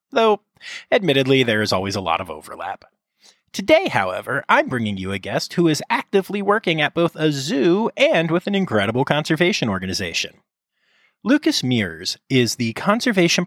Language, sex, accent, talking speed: English, male, American, 155 wpm